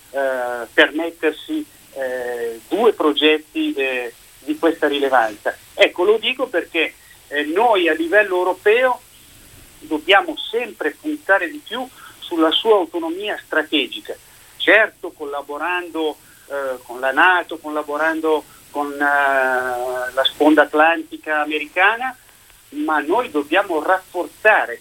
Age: 40-59